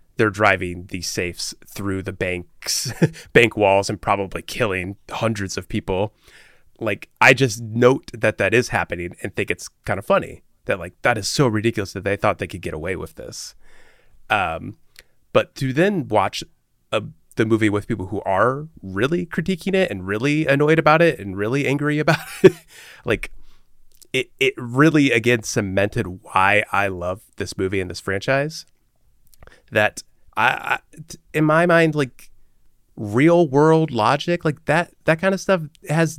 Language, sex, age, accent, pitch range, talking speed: English, male, 30-49, American, 100-145 Hz, 165 wpm